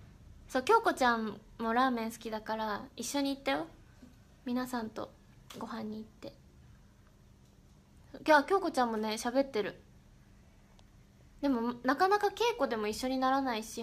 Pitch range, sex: 225-285 Hz, female